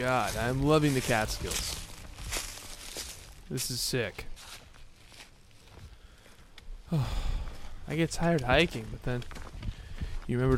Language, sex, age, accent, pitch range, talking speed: English, male, 20-39, American, 95-130 Hz, 95 wpm